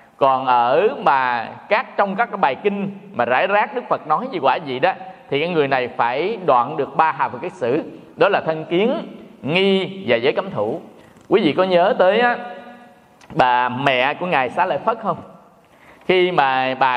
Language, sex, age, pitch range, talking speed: Vietnamese, male, 20-39, 135-195 Hz, 200 wpm